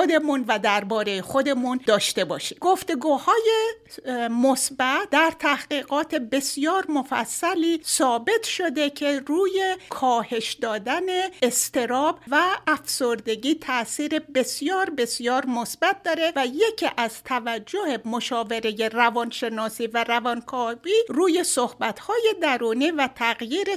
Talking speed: 100 wpm